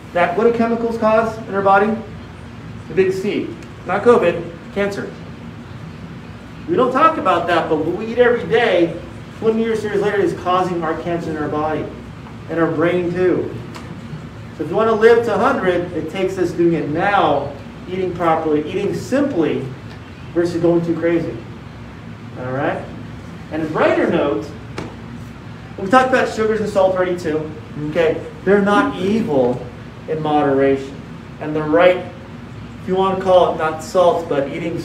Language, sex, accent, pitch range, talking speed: English, male, American, 150-200 Hz, 165 wpm